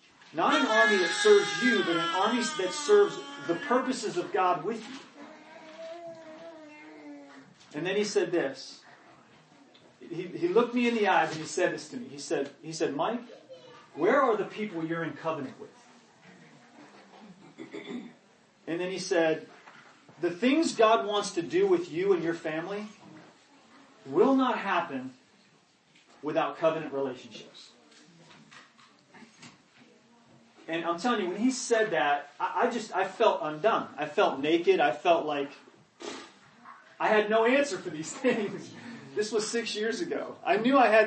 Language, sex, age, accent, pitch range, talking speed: English, male, 40-59, American, 170-265 Hz, 150 wpm